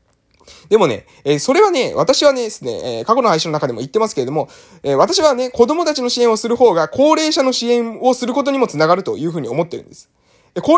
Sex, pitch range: male, 150-245 Hz